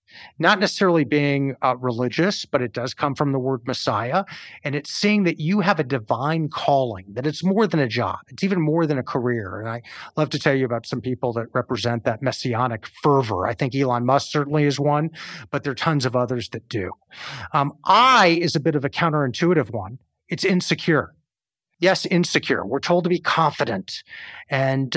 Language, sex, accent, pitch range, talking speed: English, male, American, 130-165 Hz, 195 wpm